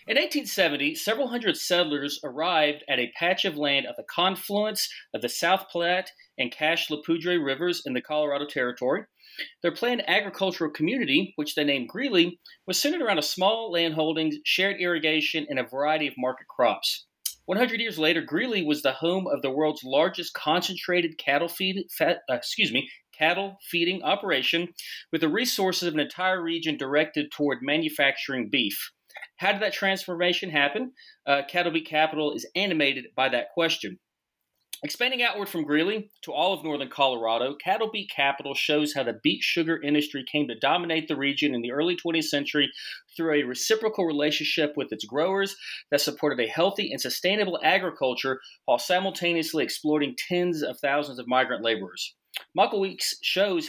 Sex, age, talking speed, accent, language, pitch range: male, 40-59, 160 wpm, American, English, 145-190 Hz